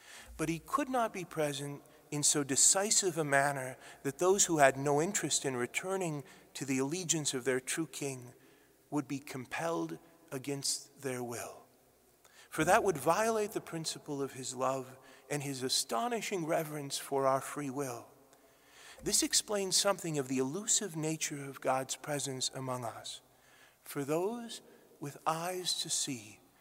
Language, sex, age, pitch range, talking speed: English, male, 40-59, 130-160 Hz, 150 wpm